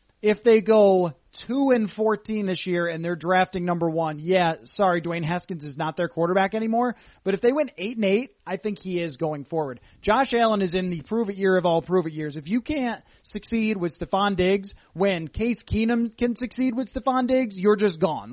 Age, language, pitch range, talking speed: 30-49, English, 170-210 Hz, 215 wpm